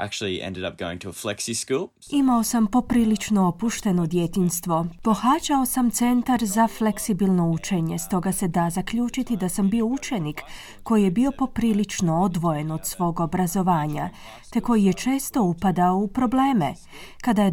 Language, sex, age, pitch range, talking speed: Croatian, female, 30-49, 175-240 Hz, 145 wpm